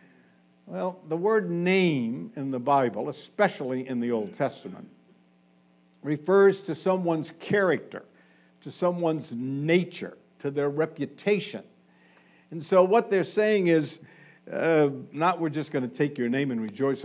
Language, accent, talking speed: English, American, 135 wpm